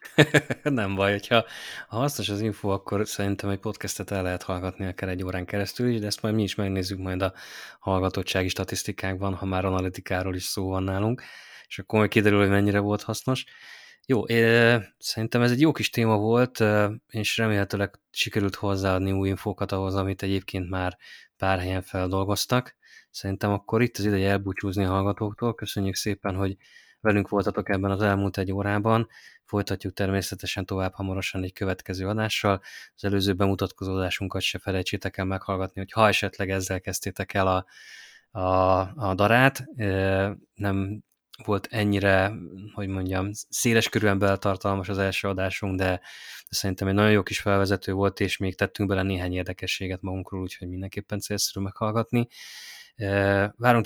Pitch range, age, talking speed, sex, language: 95-105 Hz, 20-39, 155 wpm, male, Hungarian